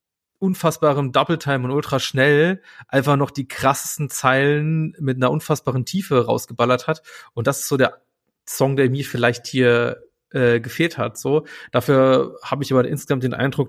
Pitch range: 120-150 Hz